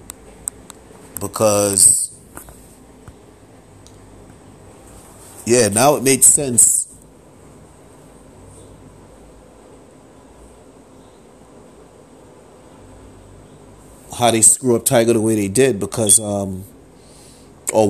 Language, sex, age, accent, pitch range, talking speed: English, male, 30-49, American, 105-125 Hz, 60 wpm